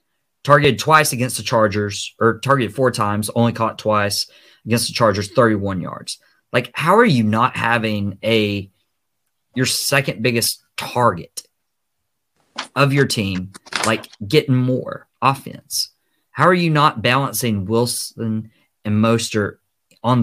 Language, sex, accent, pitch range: English, male, American, 105-135 Hz